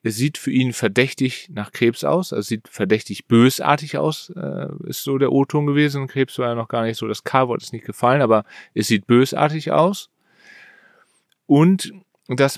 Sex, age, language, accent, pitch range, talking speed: male, 30-49, German, German, 110-140 Hz, 180 wpm